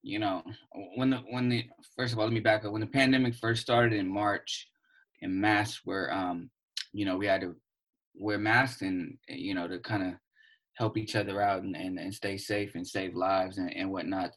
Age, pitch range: 20-39, 100-115 Hz